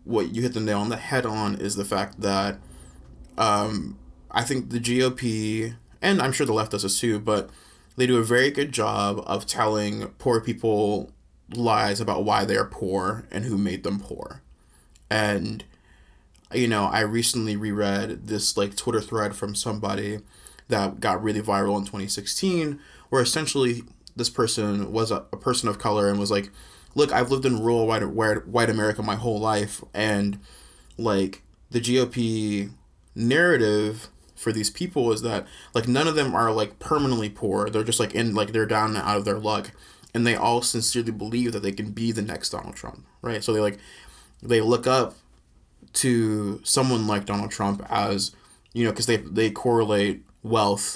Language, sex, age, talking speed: English, male, 20-39, 180 wpm